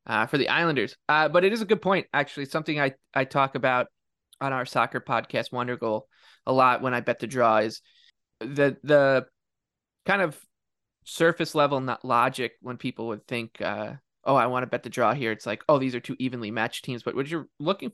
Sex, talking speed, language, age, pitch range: male, 215 wpm, English, 20-39, 125-140 Hz